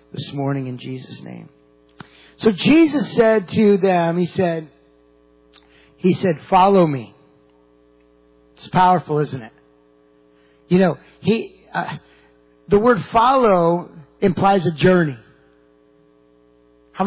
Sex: male